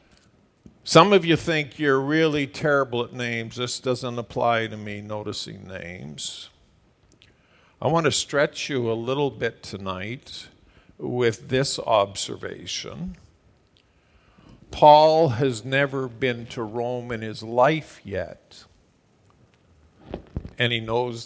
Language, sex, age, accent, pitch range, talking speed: English, male, 50-69, American, 110-135 Hz, 115 wpm